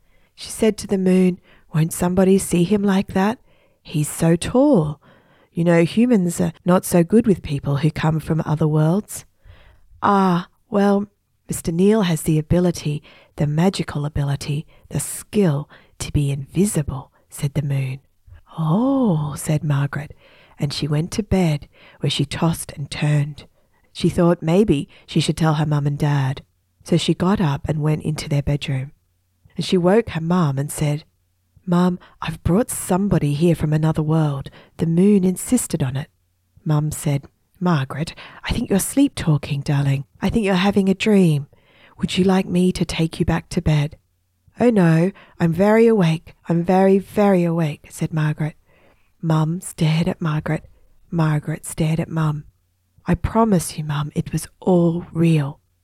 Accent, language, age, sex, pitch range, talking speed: Australian, English, 30-49, female, 145-185 Hz, 160 wpm